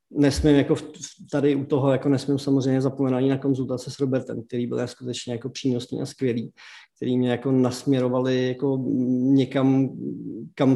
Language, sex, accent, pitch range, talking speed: Czech, male, native, 130-155 Hz, 155 wpm